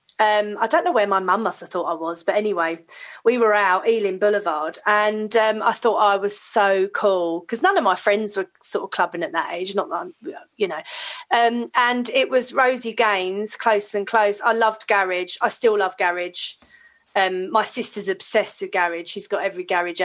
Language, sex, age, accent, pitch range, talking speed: English, female, 30-49, British, 195-245 Hz, 210 wpm